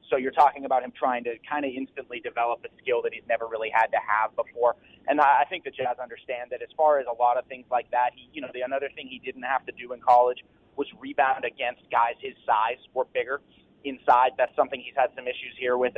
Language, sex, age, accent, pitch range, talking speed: English, male, 30-49, American, 120-160 Hz, 245 wpm